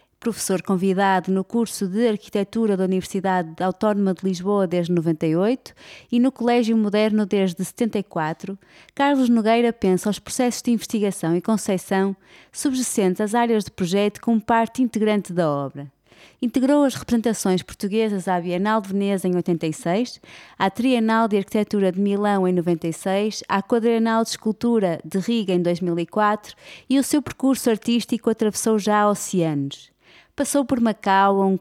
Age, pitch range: 20-39, 190-225 Hz